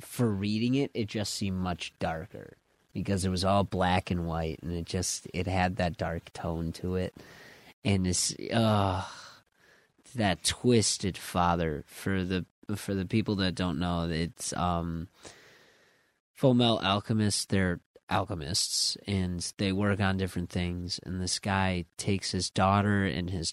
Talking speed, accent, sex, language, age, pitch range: 150 wpm, American, male, English, 30-49, 85-105 Hz